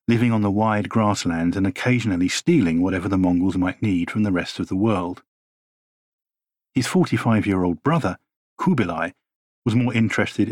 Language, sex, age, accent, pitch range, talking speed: English, male, 50-69, British, 90-115 Hz, 150 wpm